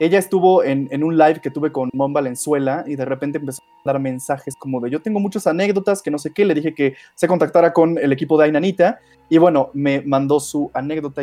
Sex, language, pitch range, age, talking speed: male, Spanish, 135-175 Hz, 20-39, 235 wpm